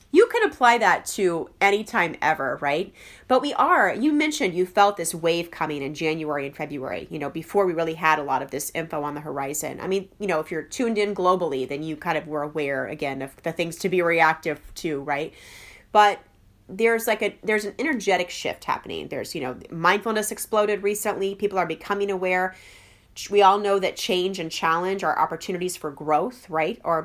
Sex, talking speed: female, 205 wpm